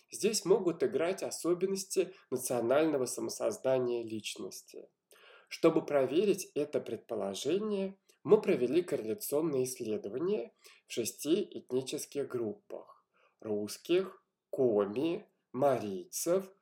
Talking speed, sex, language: 85 wpm, male, Russian